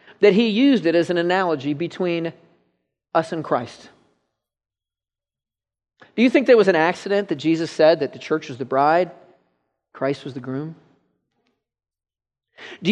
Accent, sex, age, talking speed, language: American, male, 40-59, 150 wpm, English